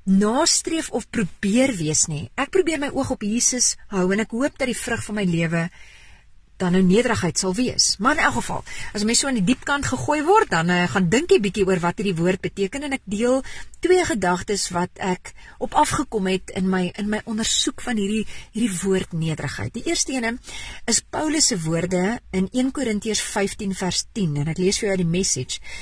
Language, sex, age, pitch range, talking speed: English, female, 40-59, 180-275 Hz, 200 wpm